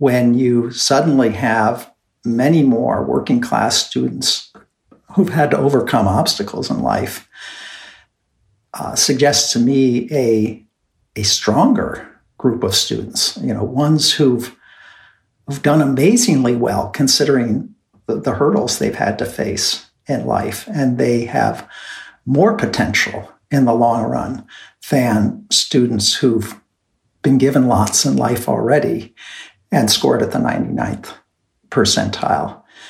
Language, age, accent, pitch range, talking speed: English, 60-79, American, 115-140 Hz, 125 wpm